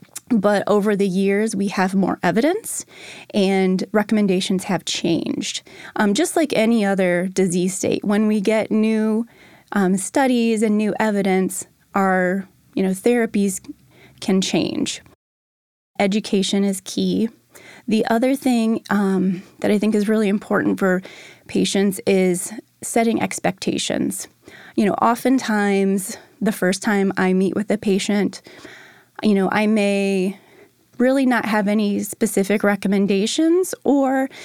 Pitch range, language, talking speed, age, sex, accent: 195-225 Hz, English, 130 wpm, 20-39, female, American